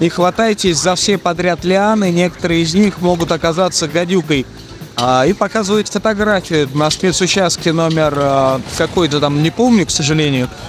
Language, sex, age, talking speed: Russian, male, 30-49, 135 wpm